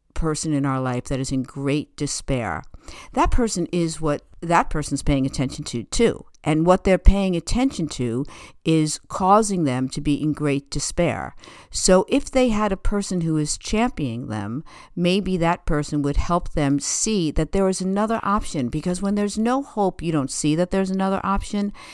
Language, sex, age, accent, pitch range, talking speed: English, female, 60-79, American, 150-200 Hz, 185 wpm